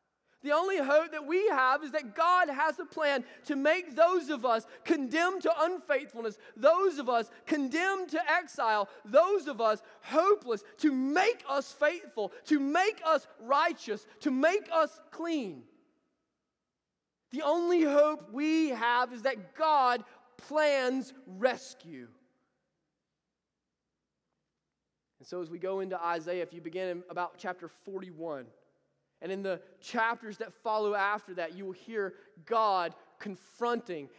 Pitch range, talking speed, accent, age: 220-315 Hz, 140 wpm, American, 20-39